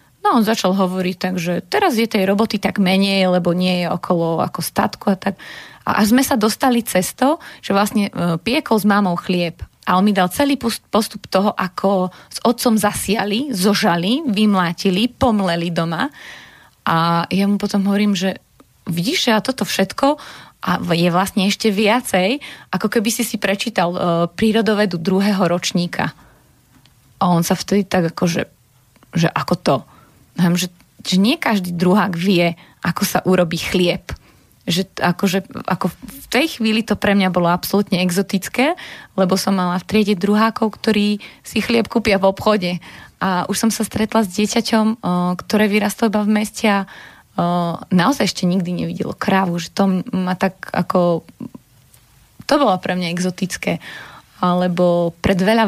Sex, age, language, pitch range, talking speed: female, 30-49, Slovak, 180-215 Hz, 155 wpm